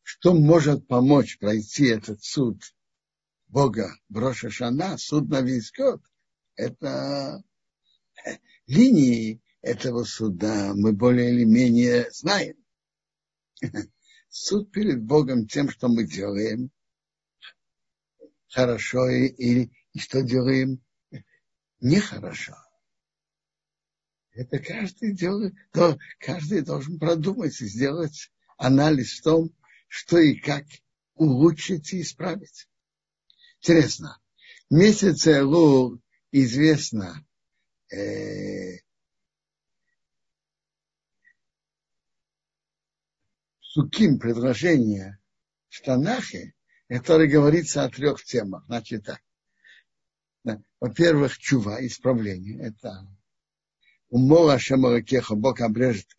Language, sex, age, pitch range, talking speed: Russian, male, 60-79, 120-160 Hz, 80 wpm